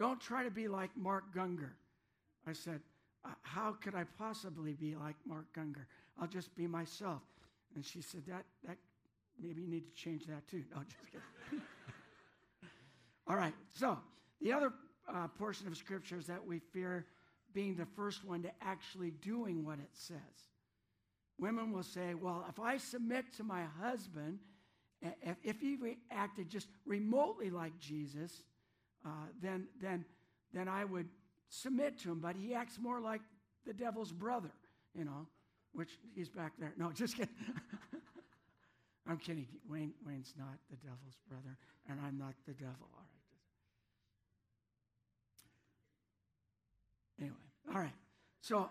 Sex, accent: male, American